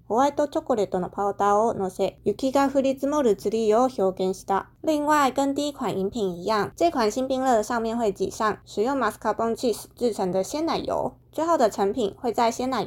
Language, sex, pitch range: Chinese, female, 205-265 Hz